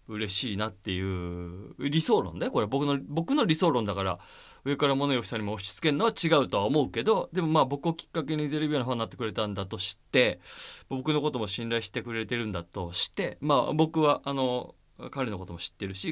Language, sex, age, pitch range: Japanese, male, 20-39, 100-145 Hz